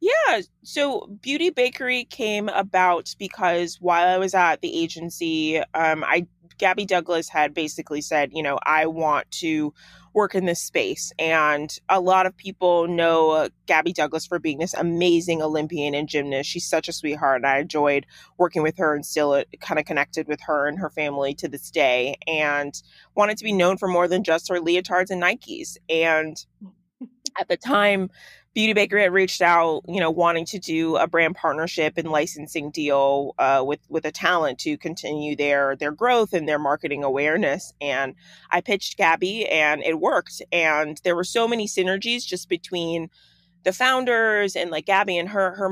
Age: 20-39